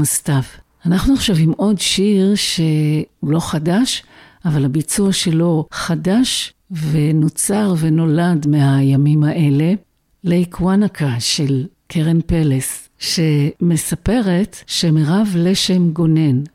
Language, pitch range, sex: Hebrew, 155-190 Hz, female